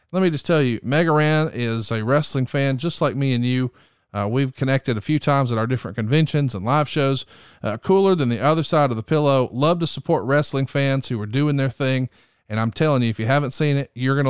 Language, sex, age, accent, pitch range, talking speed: English, male, 40-59, American, 125-170 Hz, 245 wpm